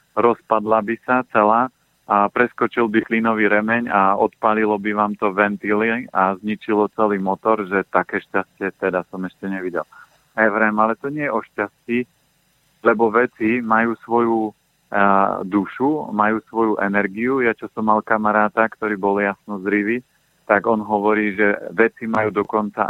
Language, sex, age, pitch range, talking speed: Slovak, male, 40-59, 105-120 Hz, 150 wpm